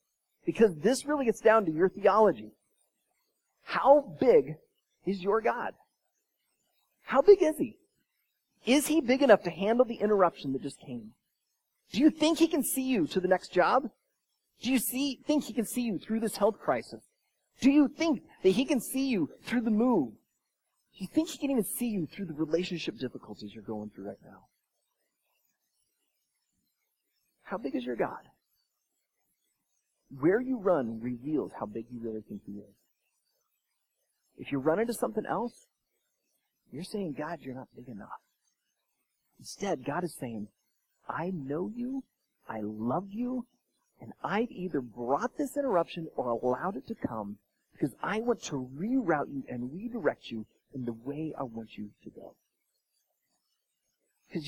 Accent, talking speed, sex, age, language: American, 160 wpm, male, 30-49, English